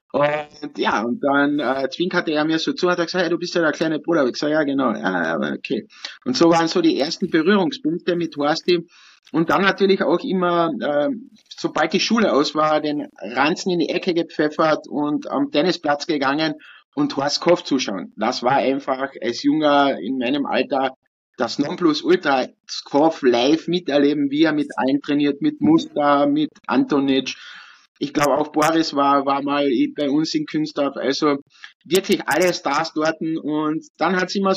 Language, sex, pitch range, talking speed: German, male, 140-175 Hz, 180 wpm